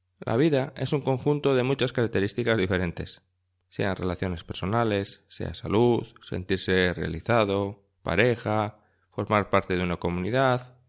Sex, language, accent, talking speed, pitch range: male, Spanish, Spanish, 120 wpm, 95-130 Hz